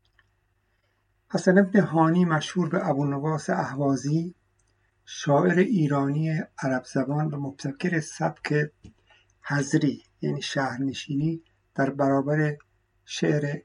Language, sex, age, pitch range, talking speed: Persian, male, 60-79, 100-160 Hz, 90 wpm